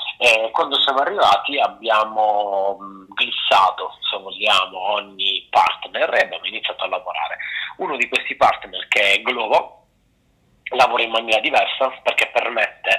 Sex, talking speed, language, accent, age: male, 125 wpm, Italian, native, 30-49